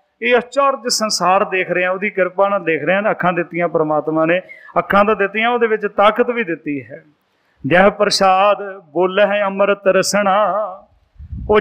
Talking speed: 160 wpm